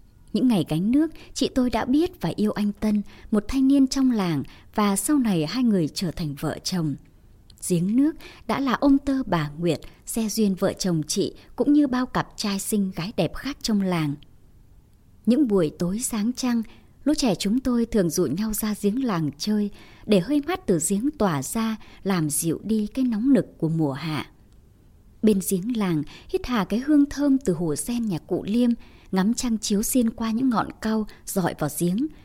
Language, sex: Vietnamese, male